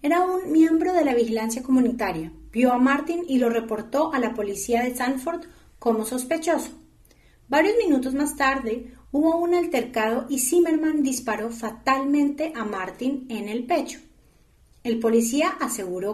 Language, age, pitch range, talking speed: Spanish, 30-49, 230-310 Hz, 145 wpm